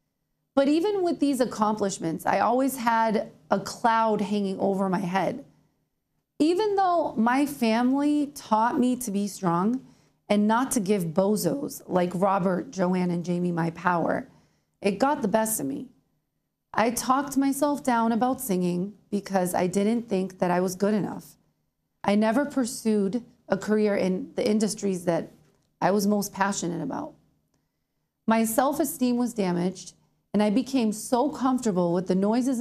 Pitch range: 195-250 Hz